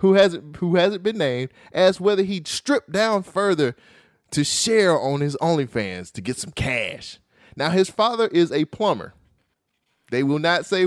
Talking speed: 165 wpm